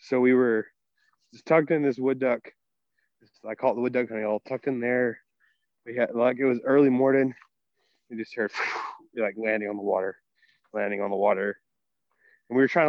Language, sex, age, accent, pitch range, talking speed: English, male, 20-39, American, 120-150 Hz, 205 wpm